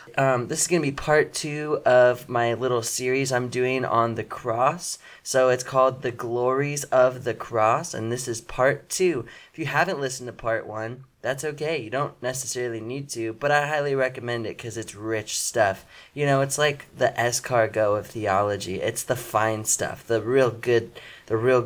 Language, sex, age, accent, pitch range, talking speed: English, male, 20-39, American, 110-130 Hz, 195 wpm